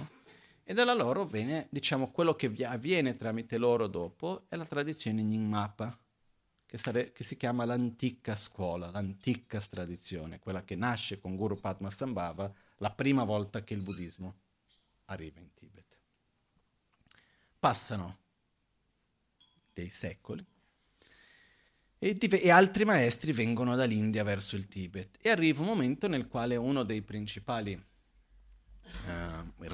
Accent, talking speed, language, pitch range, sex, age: native, 125 wpm, Italian, 100-130 Hz, male, 40-59